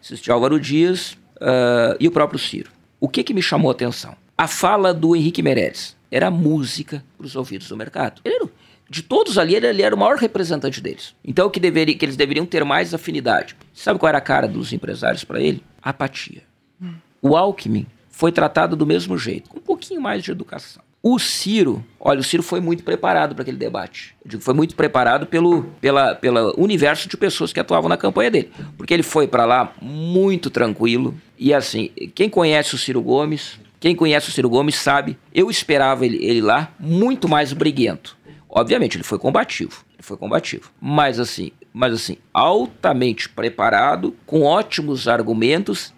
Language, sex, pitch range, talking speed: English, male, 130-175 Hz, 180 wpm